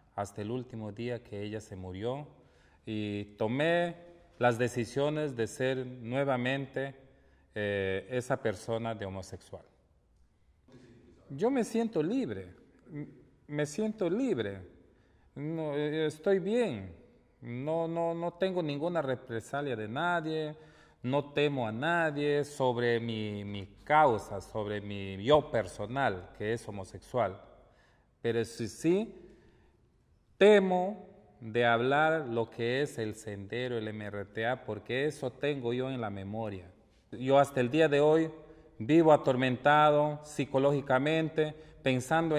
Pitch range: 105-150 Hz